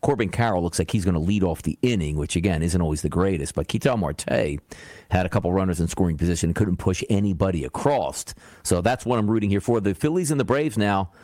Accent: American